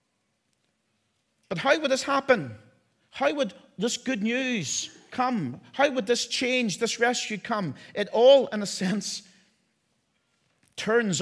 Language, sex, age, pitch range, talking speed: English, male, 40-59, 120-195 Hz, 130 wpm